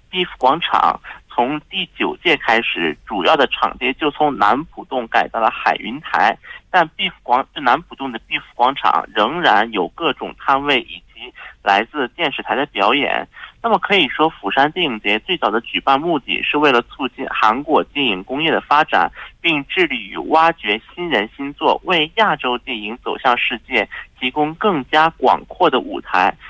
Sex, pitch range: male, 130-180 Hz